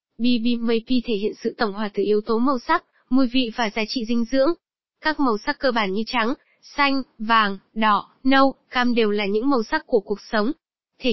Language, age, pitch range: Vietnamese, 10-29, 220-270 Hz